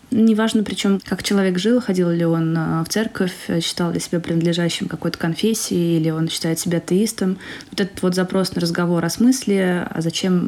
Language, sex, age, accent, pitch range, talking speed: Russian, female, 20-39, native, 170-200 Hz, 180 wpm